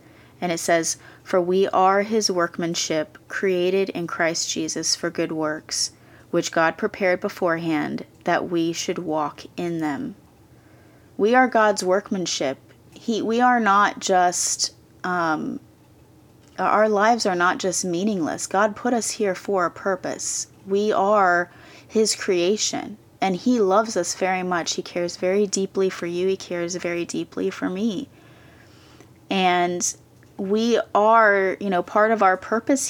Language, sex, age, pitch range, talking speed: English, female, 30-49, 165-200 Hz, 145 wpm